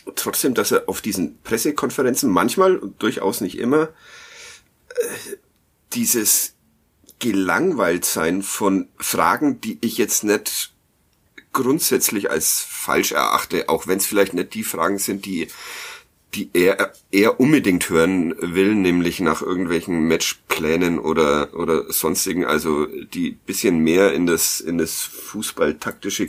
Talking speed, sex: 130 wpm, male